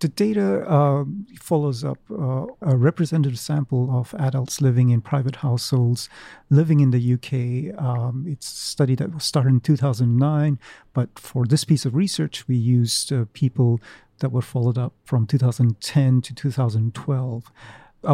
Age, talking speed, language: 40-59, 150 wpm, English